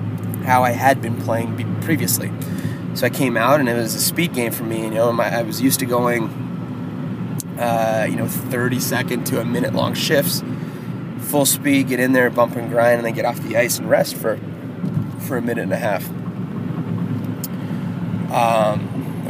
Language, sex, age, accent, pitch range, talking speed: English, male, 20-39, American, 120-145 Hz, 185 wpm